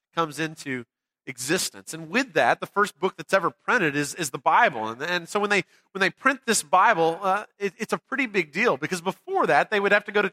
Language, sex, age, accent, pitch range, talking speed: English, male, 30-49, American, 175-220 Hz, 245 wpm